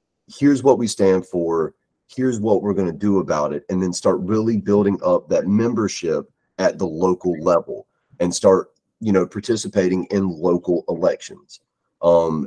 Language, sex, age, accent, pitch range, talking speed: English, male, 30-49, American, 85-100 Hz, 165 wpm